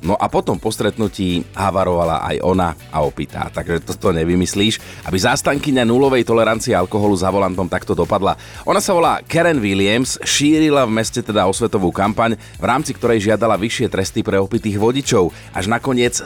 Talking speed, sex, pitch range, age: 170 wpm, male, 90-115 Hz, 30-49